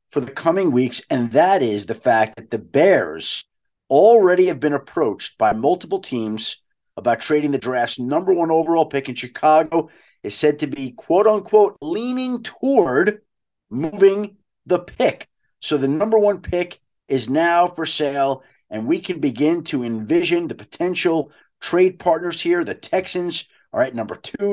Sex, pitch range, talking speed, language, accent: male, 135-205 Hz, 160 wpm, English, American